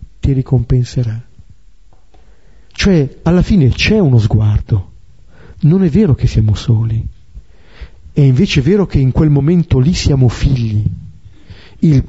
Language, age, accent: Italian, 50-69, native